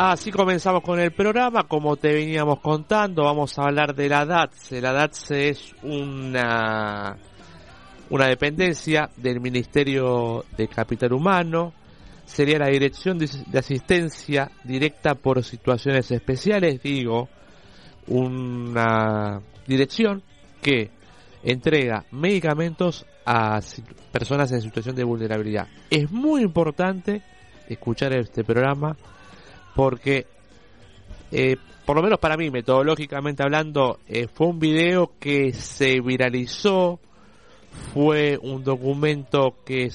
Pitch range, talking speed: 115-150 Hz, 110 wpm